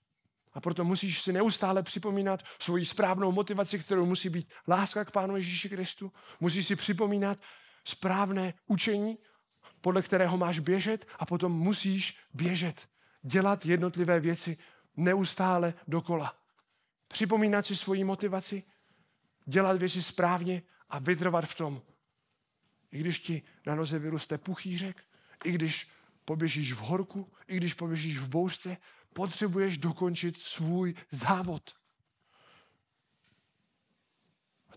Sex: male